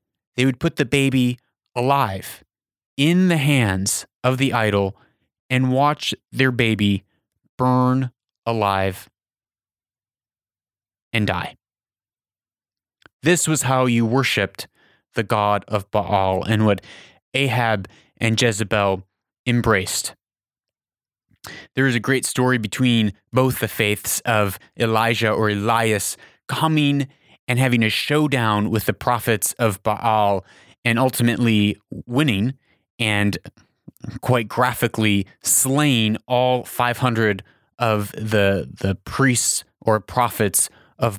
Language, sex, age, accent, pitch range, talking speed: English, male, 30-49, American, 105-130 Hz, 110 wpm